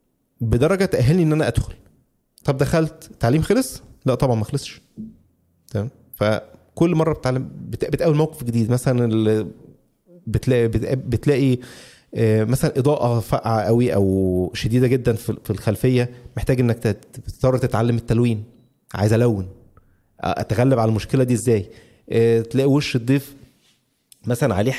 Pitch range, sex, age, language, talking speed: 115-140 Hz, male, 30-49, Arabic, 120 wpm